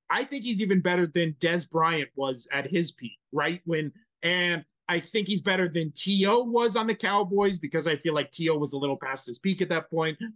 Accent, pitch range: American, 170-215 Hz